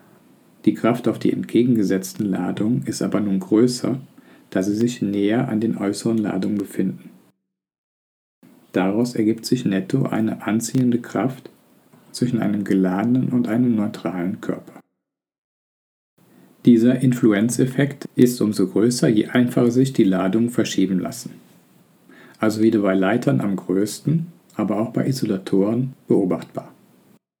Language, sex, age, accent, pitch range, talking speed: German, male, 50-69, German, 95-125 Hz, 125 wpm